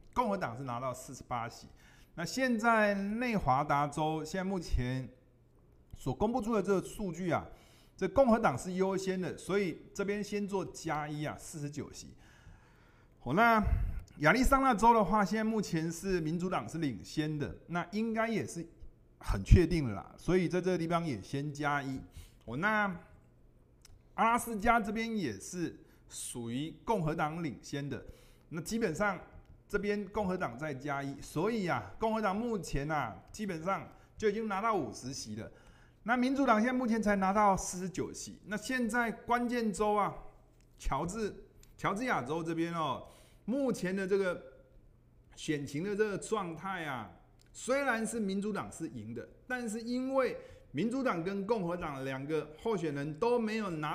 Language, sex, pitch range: Chinese, male, 145-215 Hz